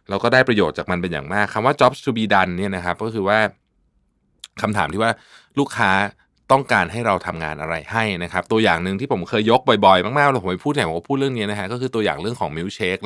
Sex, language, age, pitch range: male, Thai, 20-39, 90-120 Hz